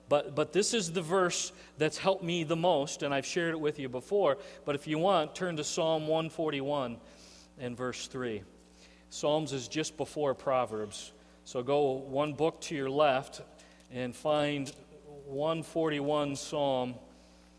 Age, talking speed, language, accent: 40-59, 155 wpm, English, American